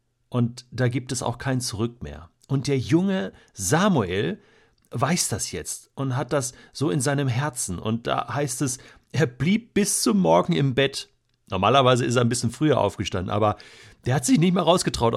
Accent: German